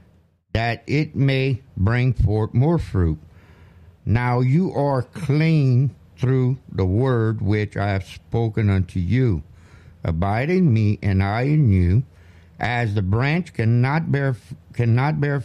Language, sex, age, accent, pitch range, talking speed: English, male, 60-79, American, 95-135 Hz, 130 wpm